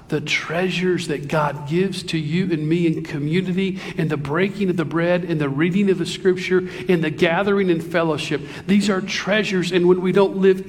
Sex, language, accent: male, English, American